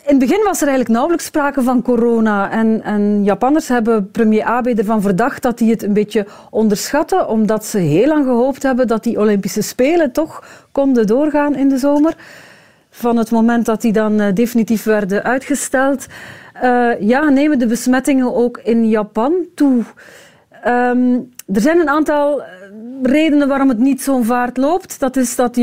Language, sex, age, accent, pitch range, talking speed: Dutch, female, 40-59, Dutch, 220-280 Hz, 175 wpm